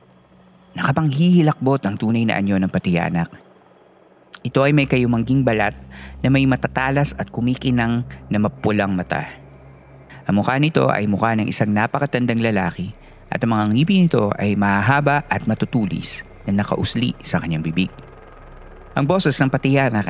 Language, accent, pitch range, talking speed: Filipino, native, 95-135 Hz, 145 wpm